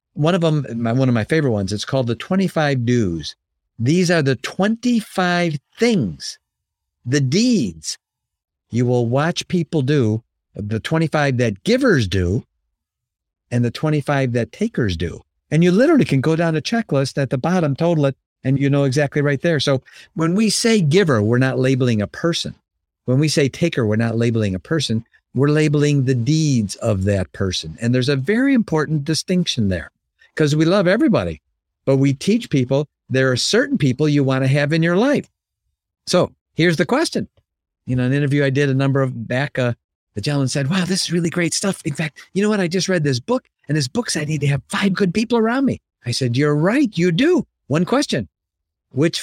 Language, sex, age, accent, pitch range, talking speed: English, male, 50-69, American, 120-170 Hz, 200 wpm